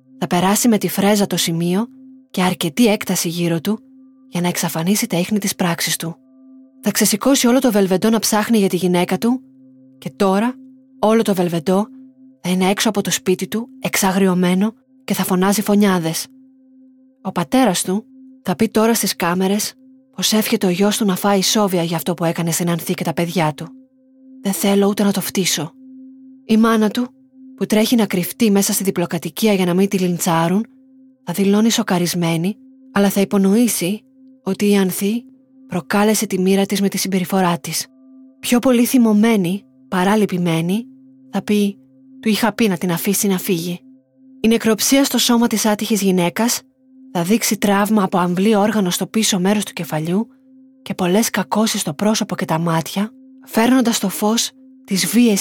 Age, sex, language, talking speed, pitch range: 20-39, female, Greek, 170 wpm, 185-245 Hz